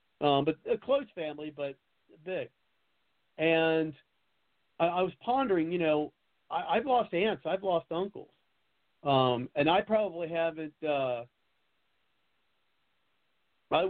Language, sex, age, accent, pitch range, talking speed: English, male, 50-69, American, 135-170 Hz, 110 wpm